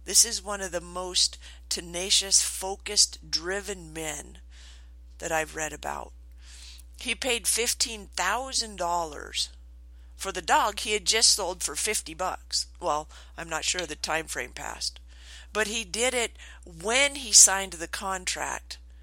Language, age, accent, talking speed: English, 50-69, American, 140 wpm